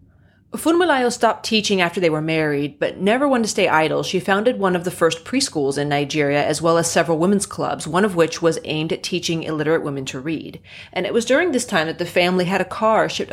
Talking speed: 235 wpm